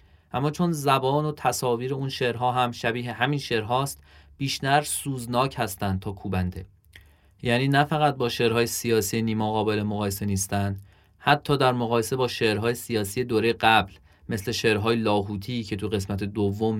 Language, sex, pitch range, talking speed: Persian, male, 100-135 Hz, 145 wpm